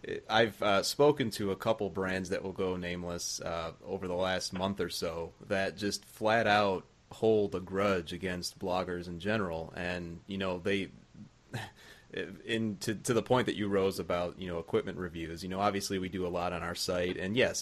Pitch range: 90-105 Hz